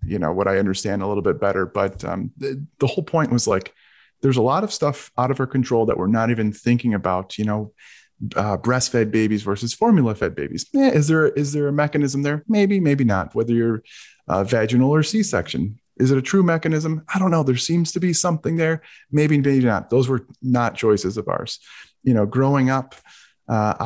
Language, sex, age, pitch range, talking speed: English, male, 30-49, 110-140 Hz, 215 wpm